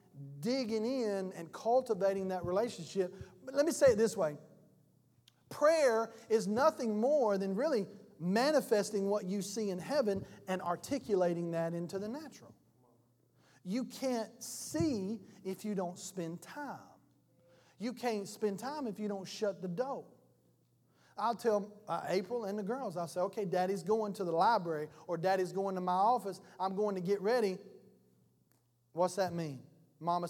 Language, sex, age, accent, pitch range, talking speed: English, male, 40-59, American, 175-225 Hz, 155 wpm